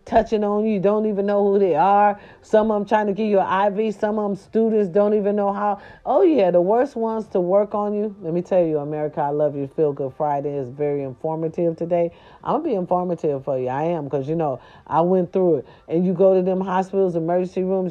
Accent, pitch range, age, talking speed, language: American, 165-200 Hz, 40-59, 240 wpm, English